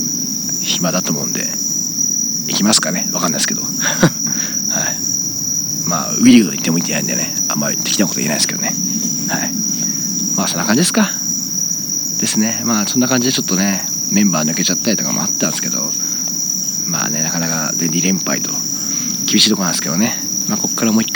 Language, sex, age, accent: Japanese, male, 40-59, native